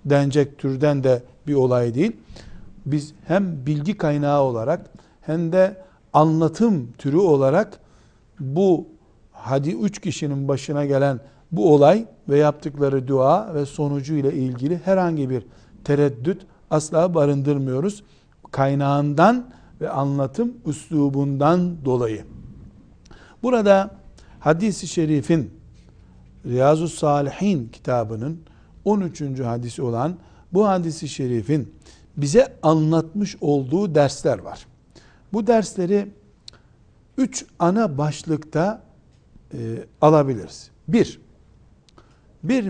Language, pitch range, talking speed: Turkish, 140-185 Hz, 95 wpm